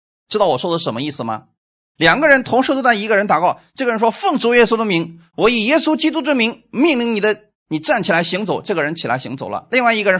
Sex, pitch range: male, 145-235 Hz